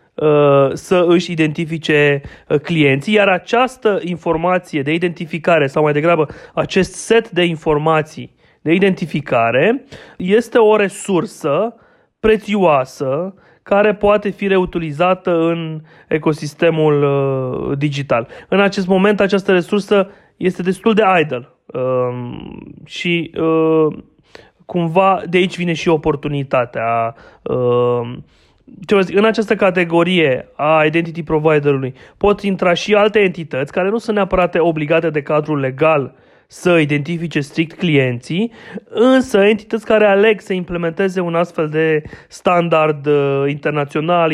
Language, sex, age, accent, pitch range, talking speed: Romanian, male, 30-49, native, 150-195 Hz, 110 wpm